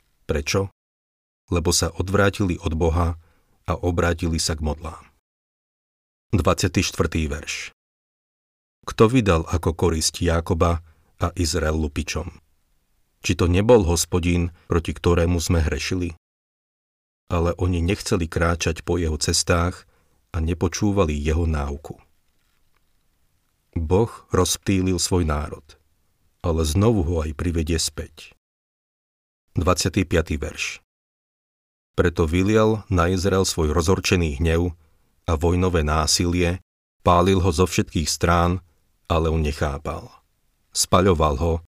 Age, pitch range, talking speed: 40-59, 80-90 Hz, 105 wpm